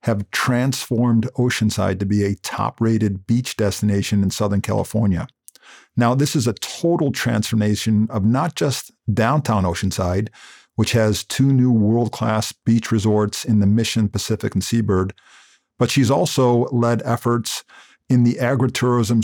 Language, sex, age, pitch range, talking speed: English, male, 50-69, 105-125 Hz, 135 wpm